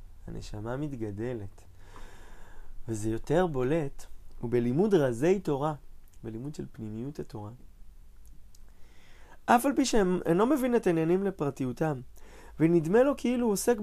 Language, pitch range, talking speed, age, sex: Hebrew, 110-170 Hz, 120 wpm, 20-39, male